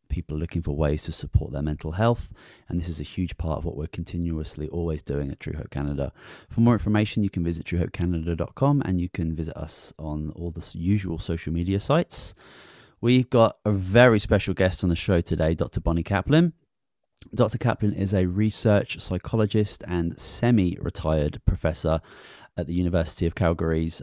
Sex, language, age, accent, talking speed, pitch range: male, English, 30-49, British, 175 wpm, 85-105 Hz